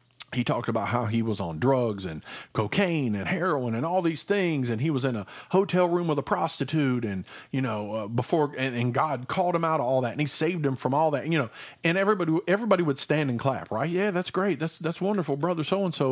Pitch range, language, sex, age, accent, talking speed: 120-175 Hz, English, male, 40-59, American, 245 wpm